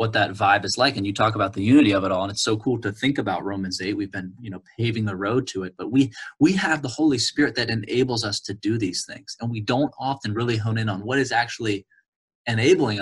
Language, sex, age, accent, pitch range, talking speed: English, male, 20-39, American, 100-125 Hz, 265 wpm